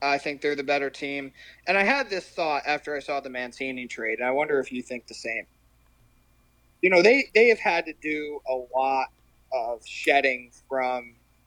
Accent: American